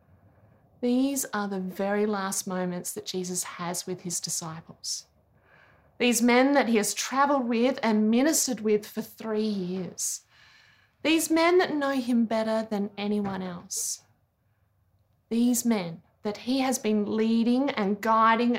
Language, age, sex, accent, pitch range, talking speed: English, 20-39, female, Australian, 180-245 Hz, 140 wpm